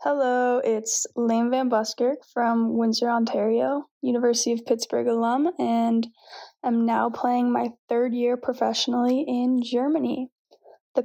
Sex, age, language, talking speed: female, 10-29, English, 125 wpm